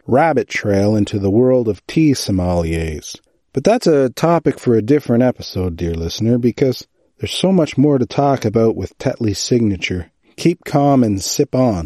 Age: 40-59